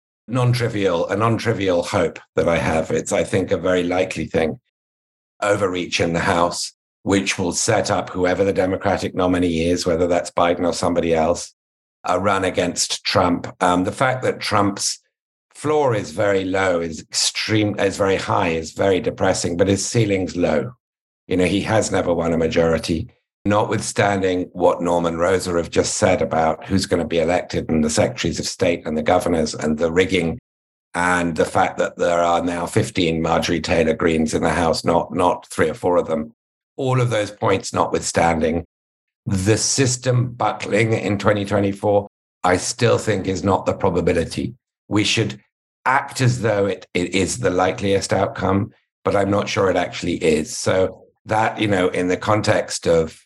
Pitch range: 85-105 Hz